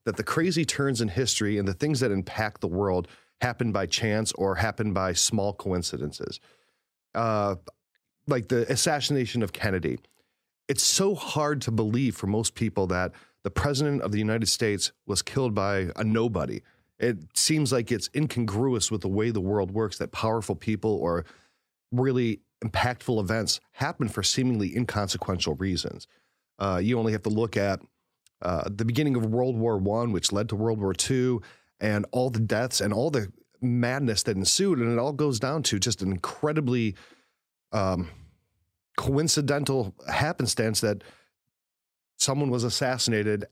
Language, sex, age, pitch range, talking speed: English, male, 40-59, 105-130 Hz, 160 wpm